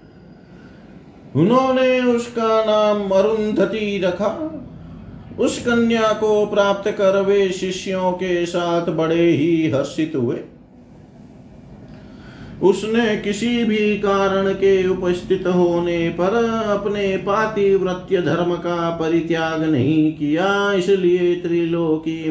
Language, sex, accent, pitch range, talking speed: Hindi, male, native, 160-195 Hz, 95 wpm